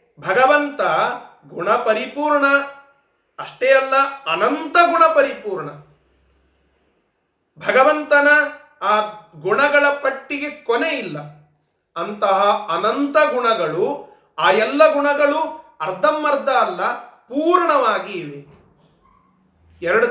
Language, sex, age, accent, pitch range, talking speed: Kannada, male, 40-59, native, 180-275 Hz, 80 wpm